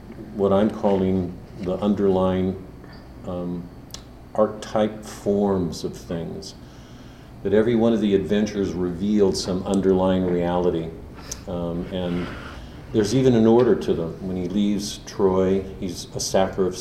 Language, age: English, 50-69